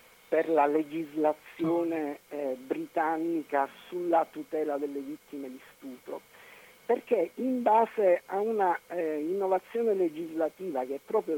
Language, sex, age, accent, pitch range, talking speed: Italian, male, 50-69, native, 155-230 Hz, 115 wpm